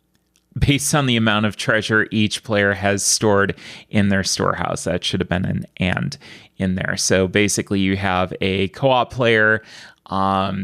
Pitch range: 95-125 Hz